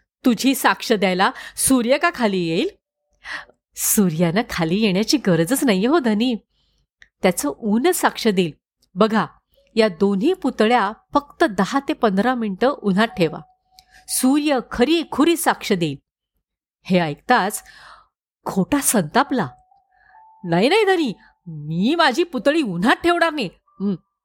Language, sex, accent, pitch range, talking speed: Marathi, female, native, 190-295 Hz, 115 wpm